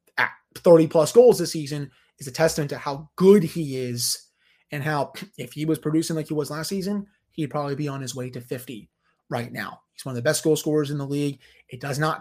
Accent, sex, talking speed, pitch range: American, male, 235 wpm, 130-180 Hz